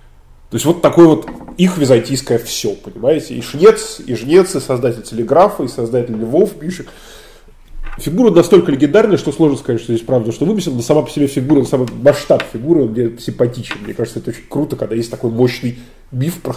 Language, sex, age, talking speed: Russian, male, 20-39, 195 wpm